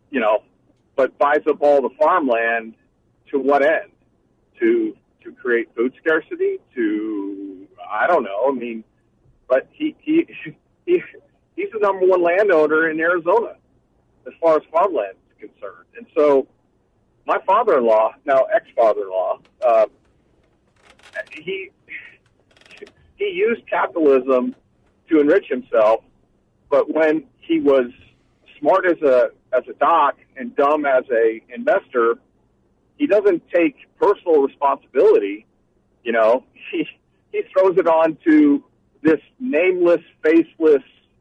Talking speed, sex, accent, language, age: 120 wpm, male, American, English, 50-69